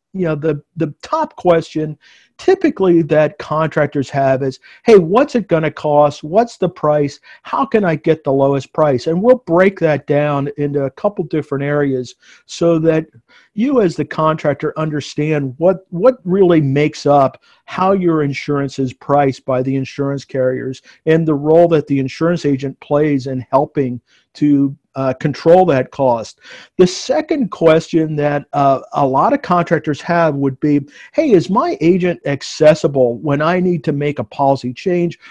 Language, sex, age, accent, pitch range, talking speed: English, male, 50-69, American, 140-180 Hz, 165 wpm